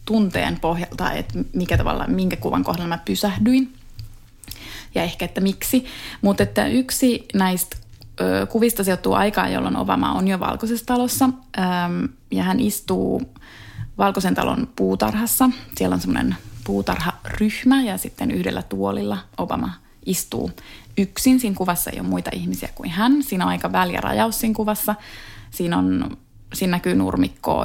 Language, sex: Finnish, female